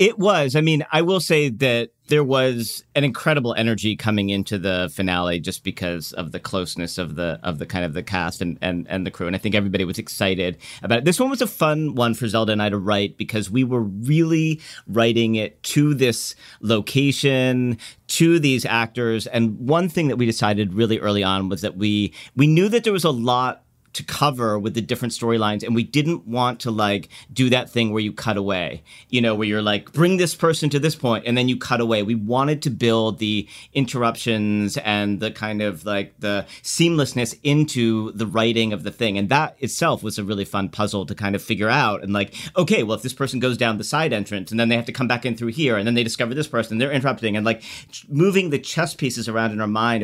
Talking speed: 230 wpm